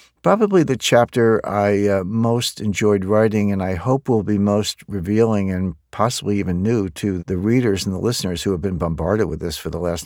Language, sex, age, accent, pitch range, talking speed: English, male, 60-79, American, 90-110 Hz, 205 wpm